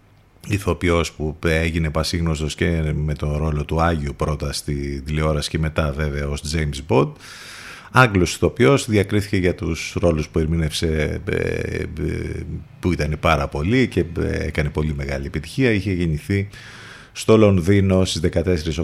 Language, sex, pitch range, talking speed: Greek, male, 80-105 Hz, 135 wpm